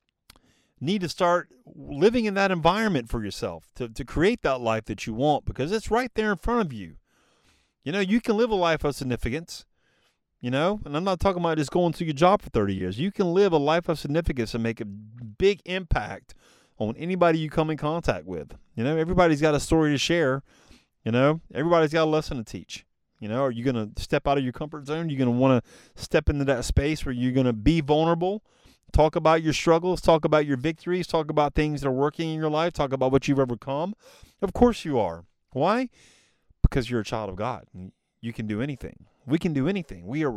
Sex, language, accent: male, English, American